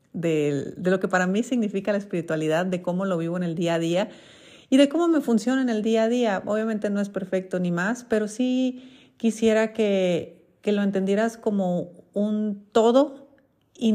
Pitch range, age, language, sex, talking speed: 165-210 Hz, 40-59, Spanish, female, 195 wpm